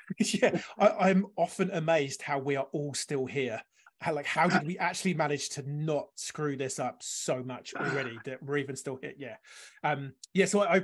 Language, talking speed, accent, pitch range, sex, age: English, 200 wpm, British, 140-190 Hz, male, 30-49